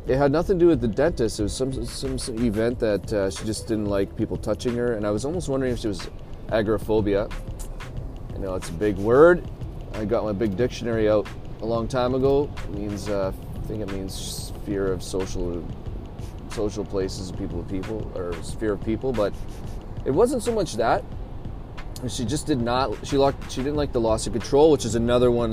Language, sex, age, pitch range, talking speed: English, male, 30-49, 100-125 Hz, 215 wpm